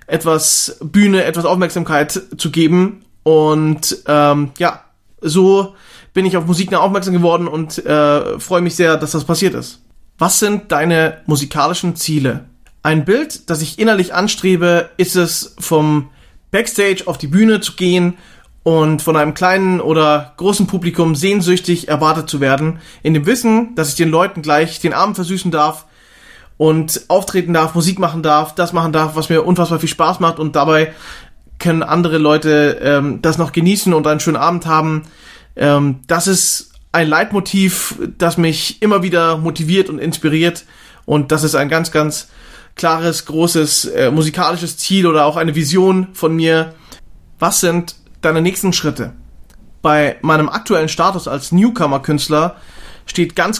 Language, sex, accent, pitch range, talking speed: German, male, German, 155-180 Hz, 155 wpm